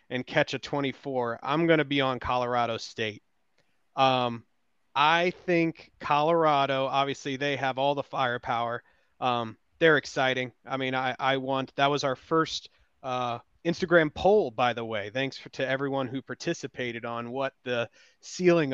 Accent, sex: American, male